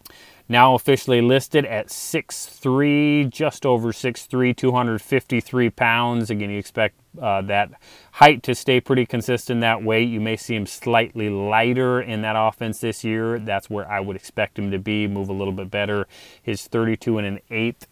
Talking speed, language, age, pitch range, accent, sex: 170 wpm, English, 30-49, 100-125 Hz, American, male